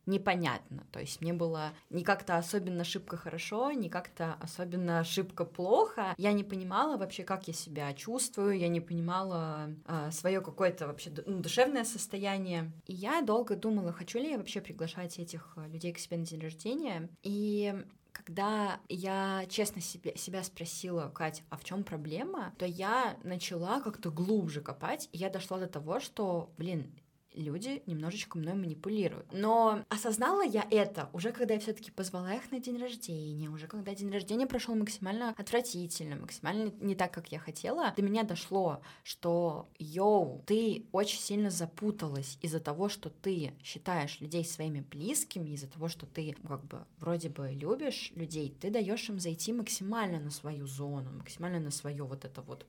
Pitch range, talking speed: 160-205 Hz, 165 wpm